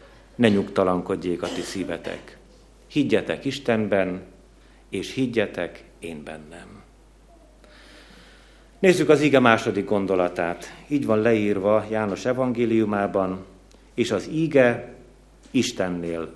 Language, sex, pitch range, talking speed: Hungarian, male, 95-125 Hz, 90 wpm